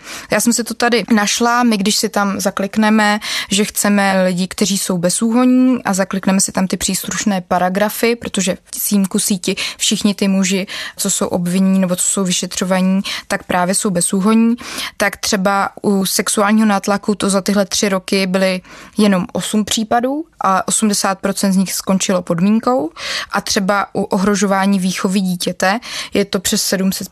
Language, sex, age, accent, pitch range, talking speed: Czech, female, 20-39, native, 190-210 Hz, 160 wpm